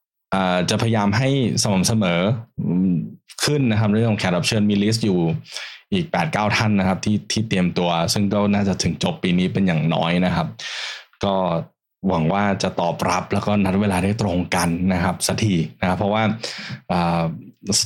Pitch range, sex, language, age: 90-115 Hz, male, Thai, 20-39